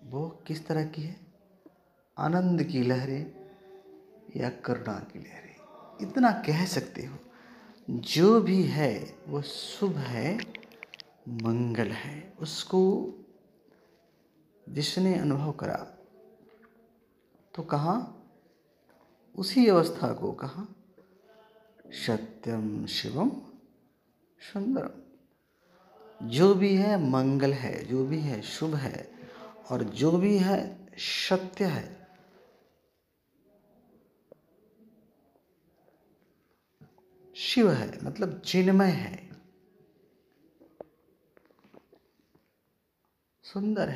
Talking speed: 80 wpm